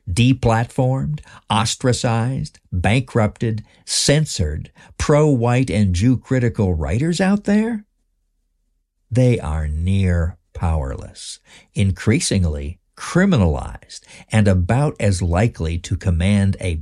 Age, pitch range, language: 60-79, 85-115 Hz, English